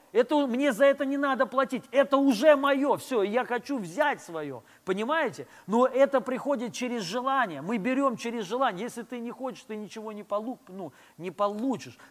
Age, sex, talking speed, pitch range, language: 30-49, male, 170 wpm, 200-270 Hz, Russian